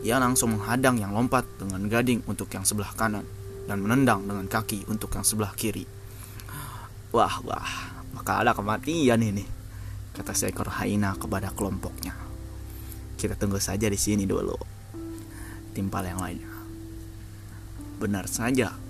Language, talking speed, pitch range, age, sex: Indonesian, 130 wpm, 100-115 Hz, 20-39, male